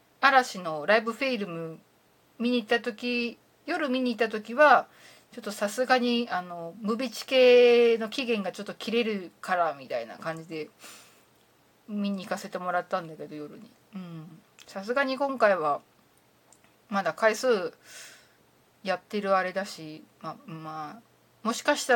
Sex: female